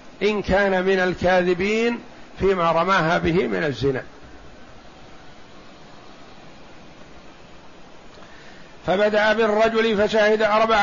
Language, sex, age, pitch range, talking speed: Arabic, male, 50-69, 190-215 Hz, 70 wpm